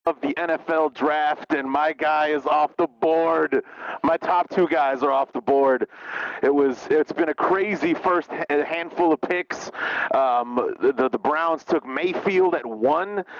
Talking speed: 165 wpm